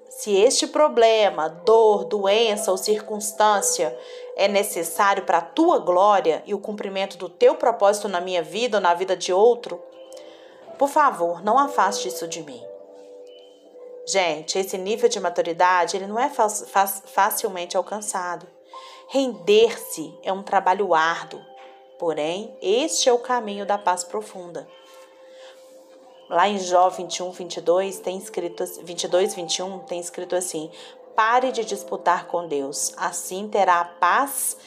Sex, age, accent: female, 30-49, Brazilian